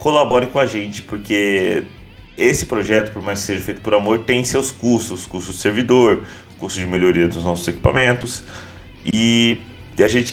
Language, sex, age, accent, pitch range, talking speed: Portuguese, male, 30-49, Brazilian, 95-115 Hz, 170 wpm